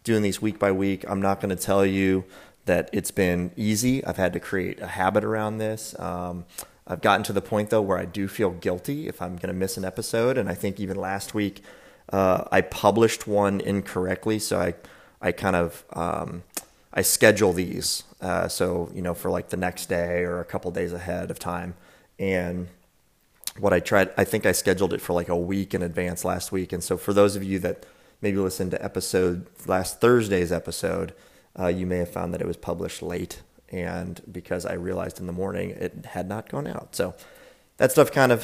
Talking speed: 210 wpm